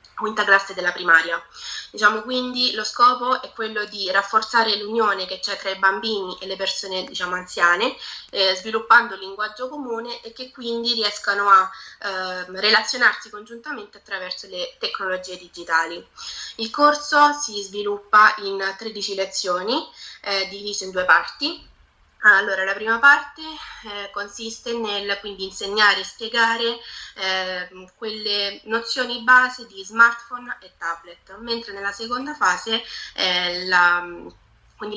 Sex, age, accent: female, 20-39, native